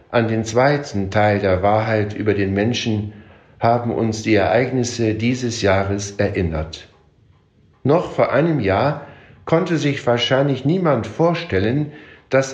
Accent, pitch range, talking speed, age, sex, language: German, 100-135 Hz, 125 wpm, 60-79, male, German